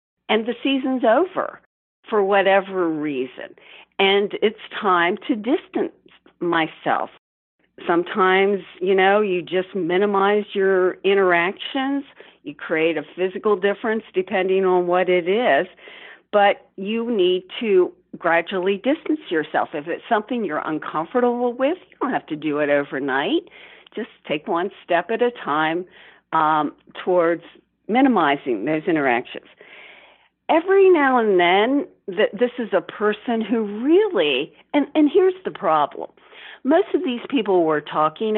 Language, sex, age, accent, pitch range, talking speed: English, female, 50-69, American, 180-275 Hz, 130 wpm